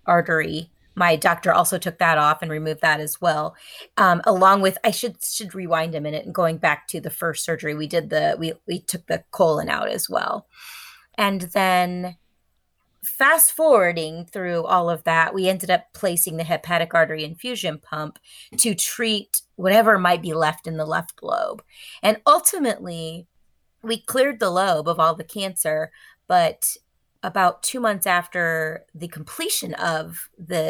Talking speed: 165 wpm